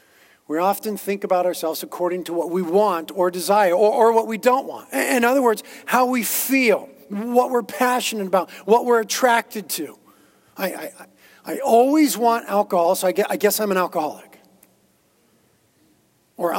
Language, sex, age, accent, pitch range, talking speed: English, male, 40-59, American, 185-230 Hz, 165 wpm